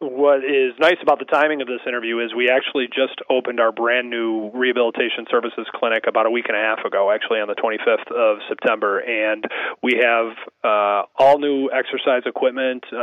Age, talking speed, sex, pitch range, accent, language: 30-49, 190 wpm, male, 110-130 Hz, American, English